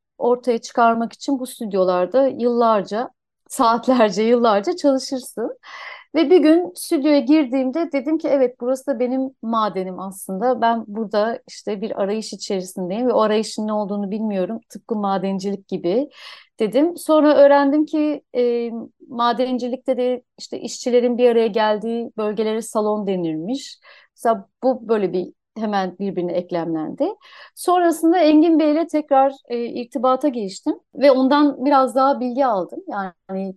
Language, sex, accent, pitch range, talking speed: Turkish, female, native, 215-280 Hz, 130 wpm